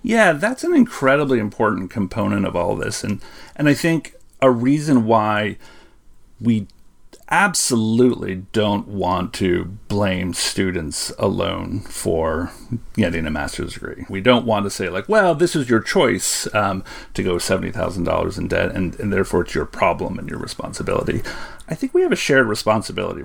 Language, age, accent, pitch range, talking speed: English, 40-59, American, 95-140 Hz, 165 wpm